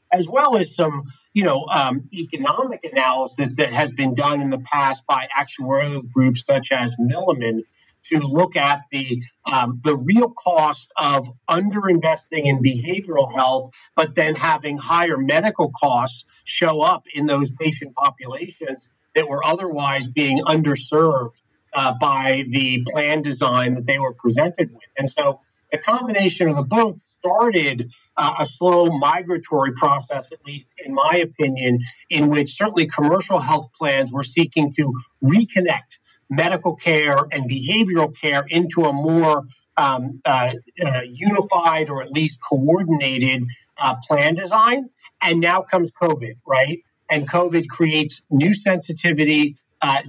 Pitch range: 135-170 Hz